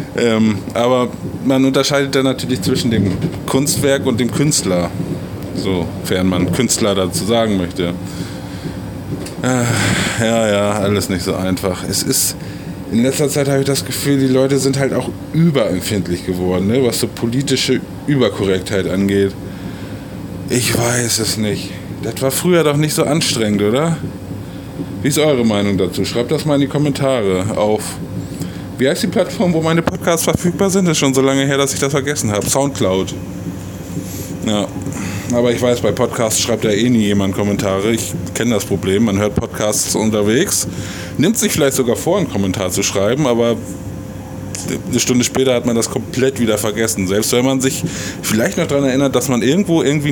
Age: 20-39